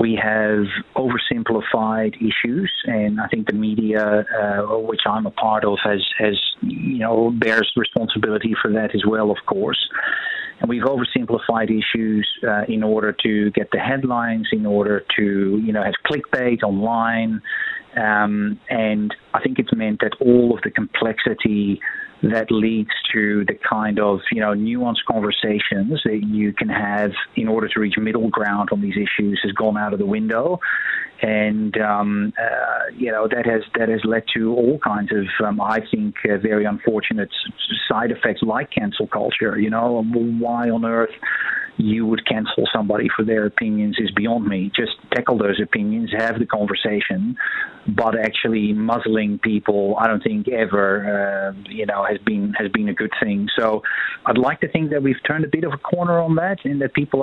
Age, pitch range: 30-49, 105-125 Hz